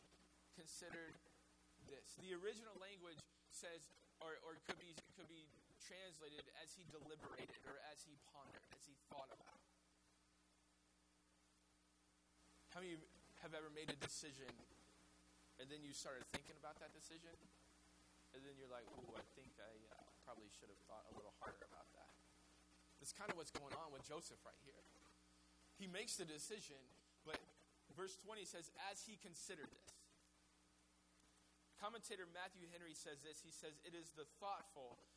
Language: English